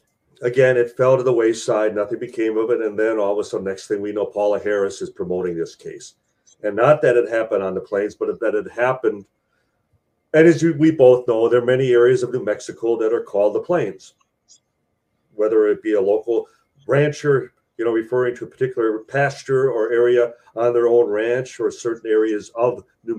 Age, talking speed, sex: 40-59, 205 wpm, male